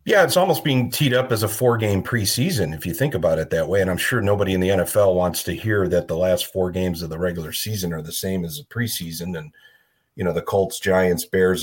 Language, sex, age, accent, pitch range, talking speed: English, male, 40-59, American, 90-115 Hz, 255 wpm